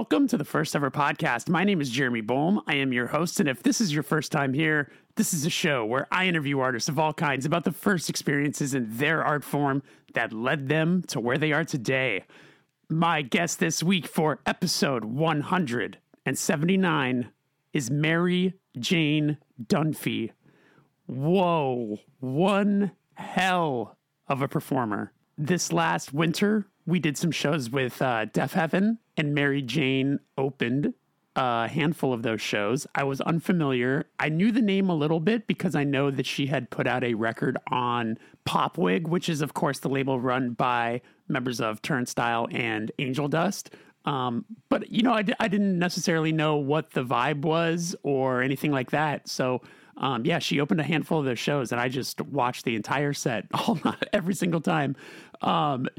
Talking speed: 175 wpm